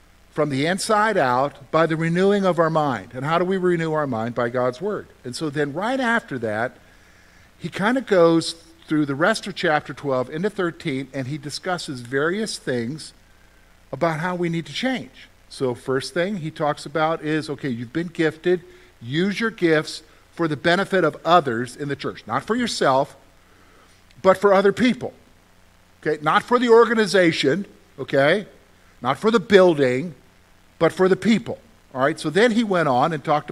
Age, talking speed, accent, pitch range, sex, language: 50-69, 180 wpm, American, 115-175 Hz, male, English